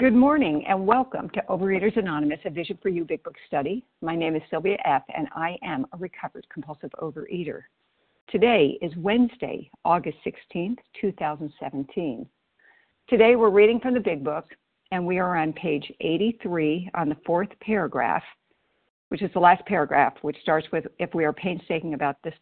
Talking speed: 170 wpm